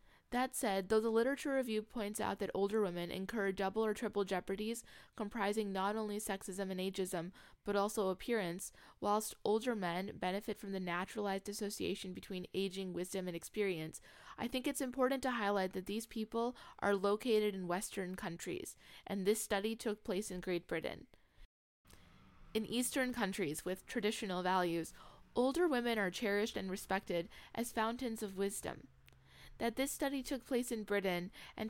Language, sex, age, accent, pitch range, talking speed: English, female, 10-29, American, 185-230 Hz, 160 wpm